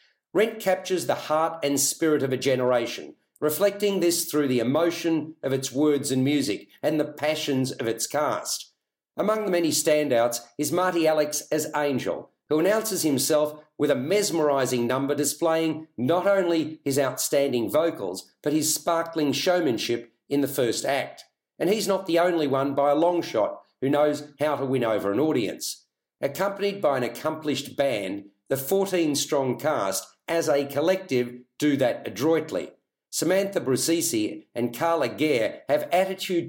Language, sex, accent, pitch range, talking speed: English, male, Australian, 140-170 Hz, 155 wpm